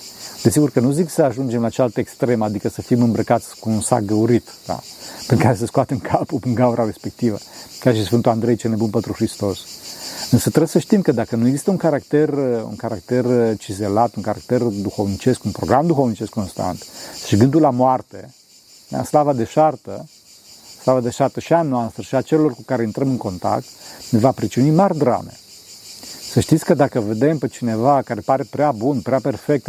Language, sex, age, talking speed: Romanian, male, 40-59, 190 wpm